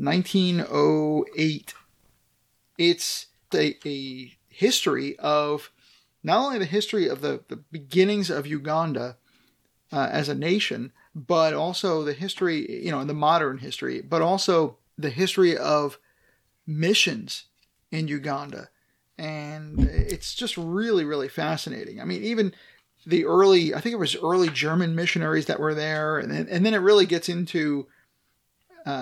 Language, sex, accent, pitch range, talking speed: English, male, American, 145-185 Hz, 135 wpm